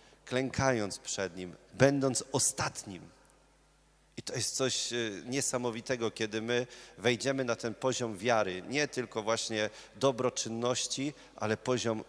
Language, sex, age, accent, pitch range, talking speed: Polish, male, 40-59, native, 105-125 Hz, 115 wpm